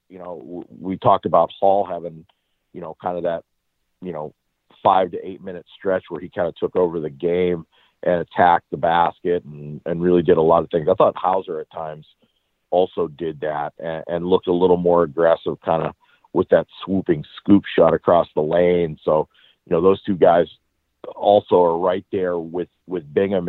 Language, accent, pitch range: English, American, 85-100 Hz